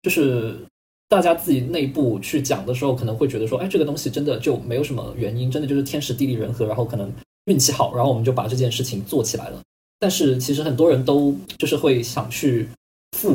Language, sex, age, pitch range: Chinese, male, 20-39, 120-140 Hz